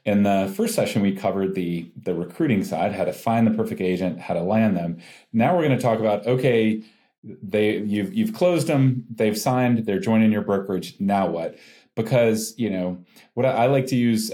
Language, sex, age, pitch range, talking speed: English, male, 40-59, 90-115 Hz, 205 wpm